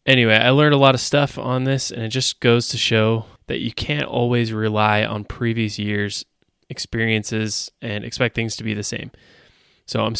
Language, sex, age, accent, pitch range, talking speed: English, male, 20-39, American, 105-120 Hz, 195 wpm